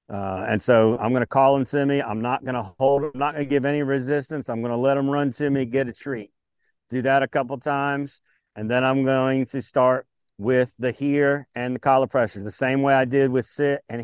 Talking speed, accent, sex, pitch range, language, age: 235 wpm, American, male, 130-160 Hz, English, 50-69